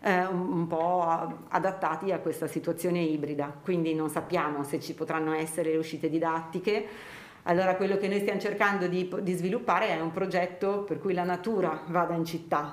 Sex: female